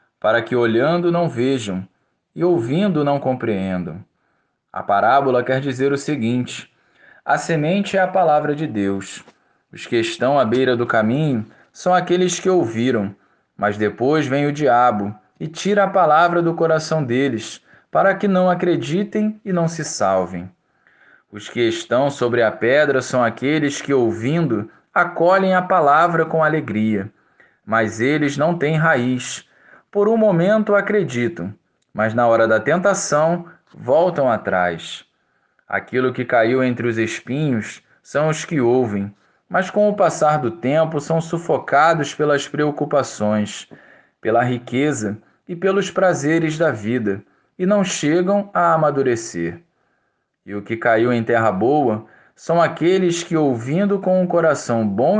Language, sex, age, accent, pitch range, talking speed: Portuguese, male, 20-39, Brazilian, 115-175 Hz, 140 wpm